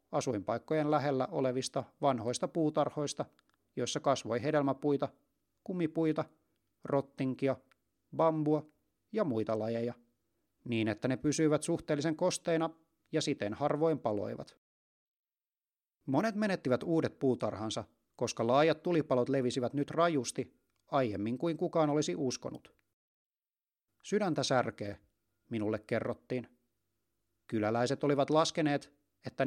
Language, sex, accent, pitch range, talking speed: Finnish, male, native, 120-155 Hz, 95 wpm